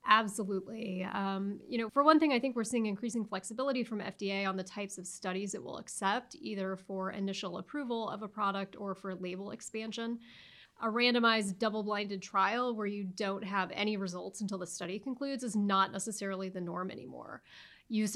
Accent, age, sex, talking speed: American, 30-49, female, 180 wpm